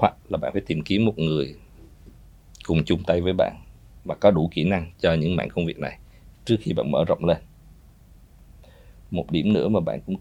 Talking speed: 205 wpm